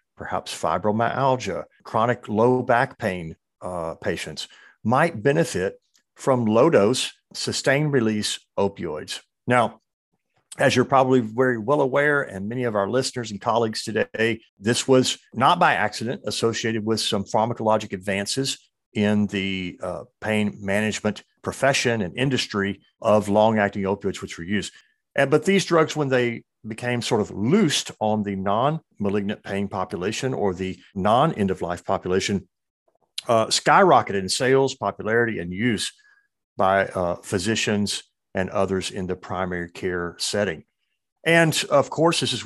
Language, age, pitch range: English, 50-69, 100-130 Hz